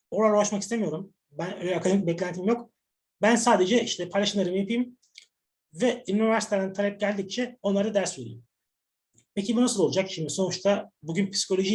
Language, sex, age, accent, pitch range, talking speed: Turkish, male, 30-49, native, 165-210 Hz, 145 wpm